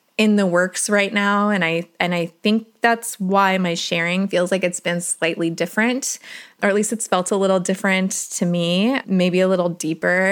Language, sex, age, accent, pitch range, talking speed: English, female, 20-39, American, 180-220 Hz, 200 wpm